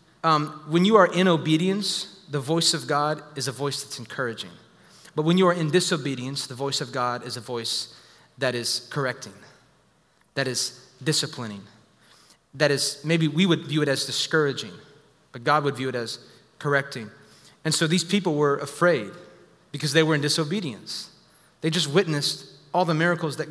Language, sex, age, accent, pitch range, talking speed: English, male, 30-49, American, 130-165 Hz, 170 wpm